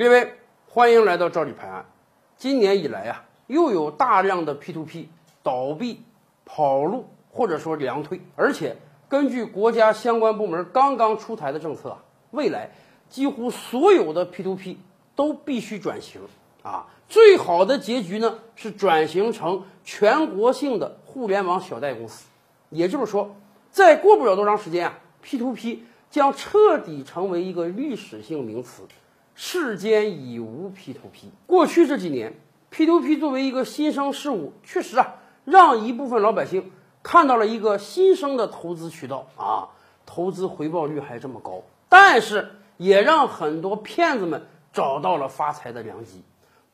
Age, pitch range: 50-69, 175-280 Hz